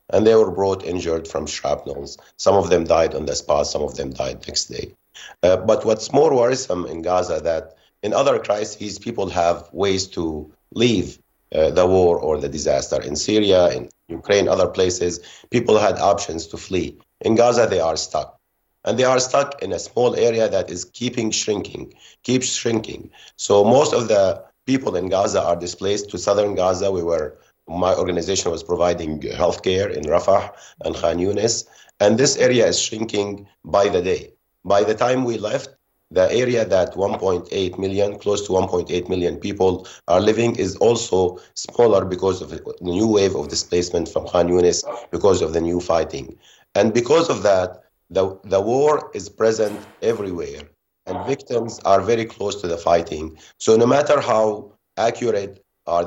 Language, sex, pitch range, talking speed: English, male, 90-110 Hz, 175 wpm